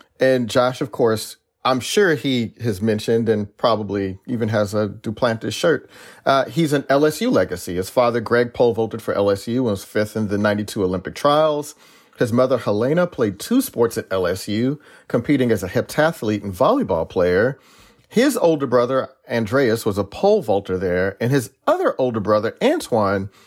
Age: 40-59